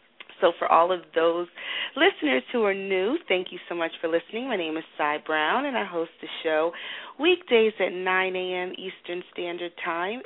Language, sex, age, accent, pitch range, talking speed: English, female, 40-59, American, 165-200 Hz, 185 wpm